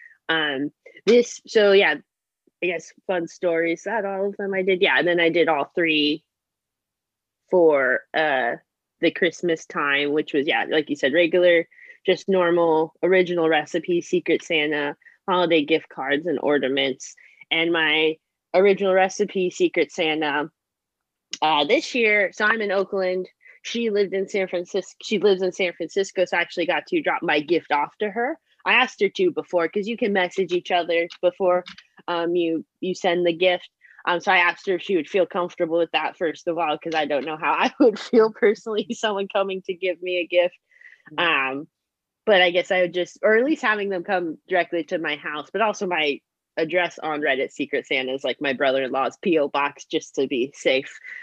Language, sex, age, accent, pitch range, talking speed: English, female, 20-39, American, 165-200 Hz, 190 wpm